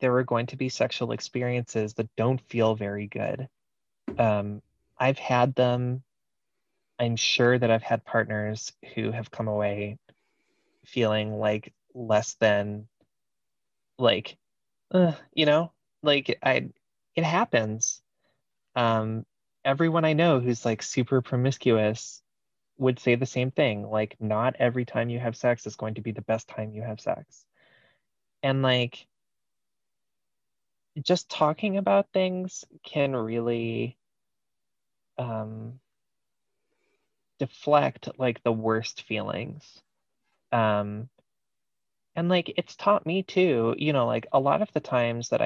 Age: 20-39